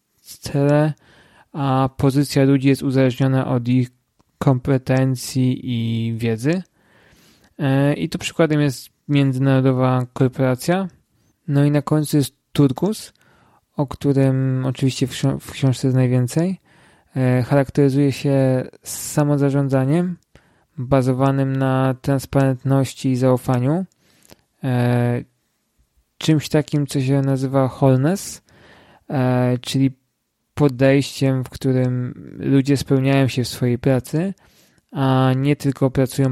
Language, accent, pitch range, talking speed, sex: Polish, native, 130-145 Hz, 95 wpm, male